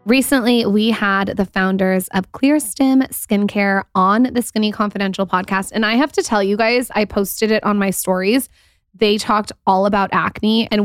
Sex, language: female, English